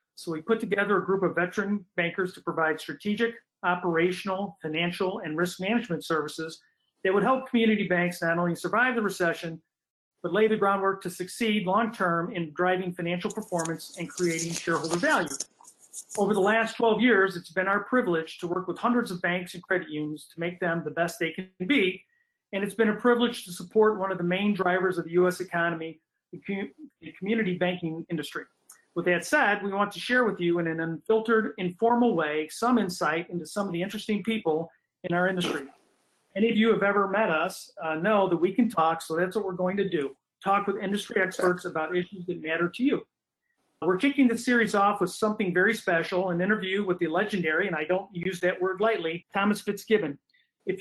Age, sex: 40-59, male